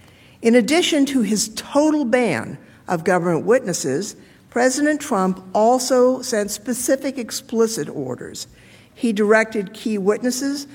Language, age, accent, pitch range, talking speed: English, 60-79, American, 175-240 Hz, 110 wpm